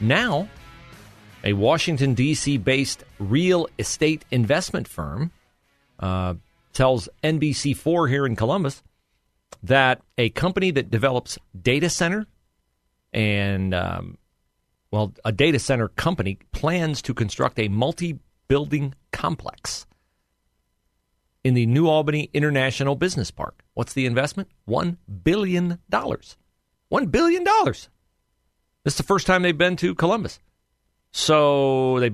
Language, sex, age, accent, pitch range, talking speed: English, male, 40-59, American, 95-145 Hz, 115 wpm